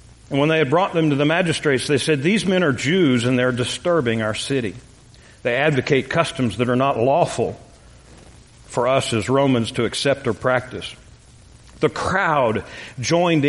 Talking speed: 170 wpm